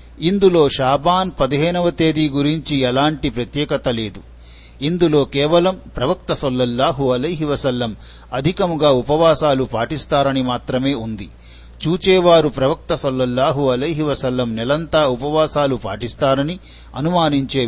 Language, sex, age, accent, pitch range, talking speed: Telugu, male, 50-69, native, 125-150 Hz, 95 wpm